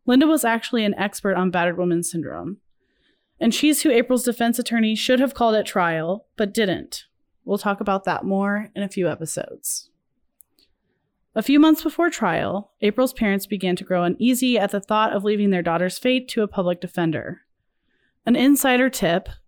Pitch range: 185-235 Hz